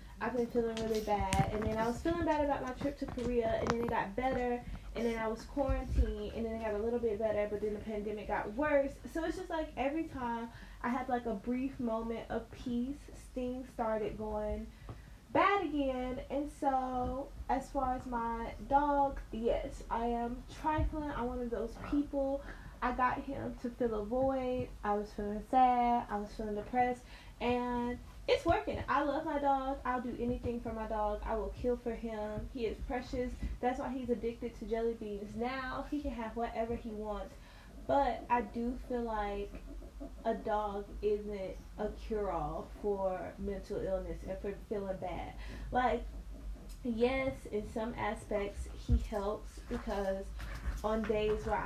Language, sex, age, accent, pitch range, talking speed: English, female, 10-29, American, 210-255 Hz, 180 wpm